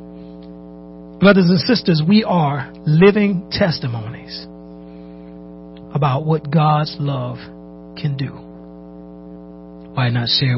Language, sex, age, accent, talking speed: English, male, 40-59, American, 90 wpm